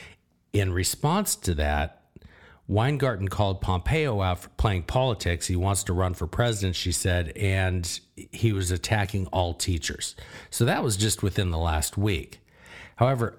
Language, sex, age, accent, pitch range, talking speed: English, male, 50-69, American, 90-120 Hz, 150 wpm